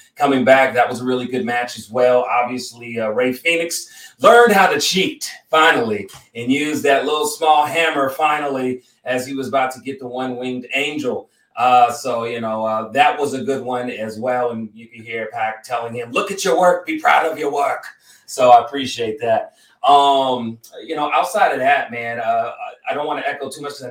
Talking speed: 210 wpm